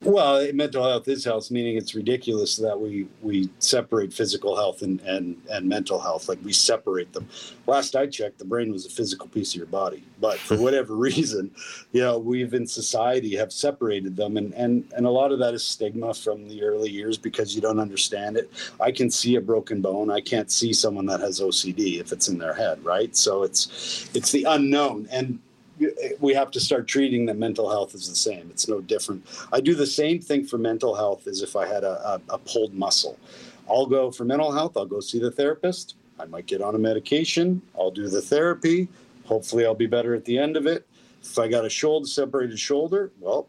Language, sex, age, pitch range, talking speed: English, male, 50-69, 110-145 Hz, 215 wpm